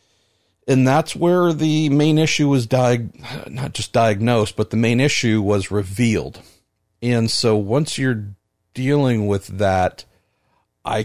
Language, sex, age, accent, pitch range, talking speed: English, male, 50-69, American, 105-135 Hz, 135 wpm